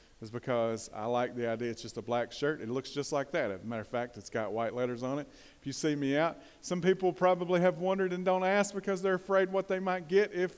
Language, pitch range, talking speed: English, 115-150 Hz, 270 wpm